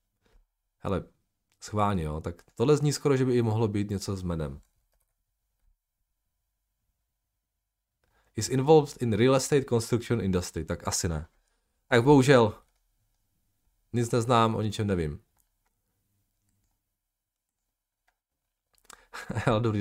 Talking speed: 100 wpm